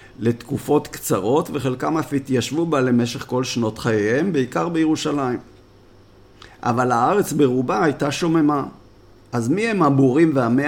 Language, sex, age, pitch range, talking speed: Hebrew, male, 50-69, 115-145 Hz, 125 wpm